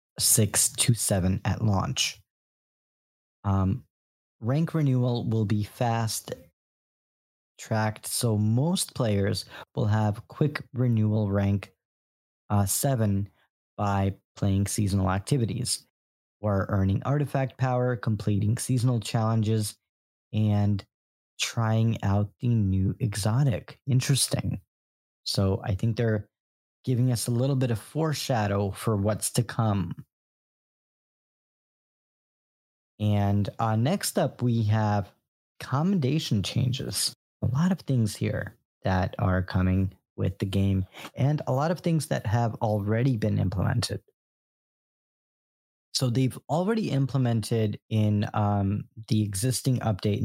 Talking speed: 110 wpm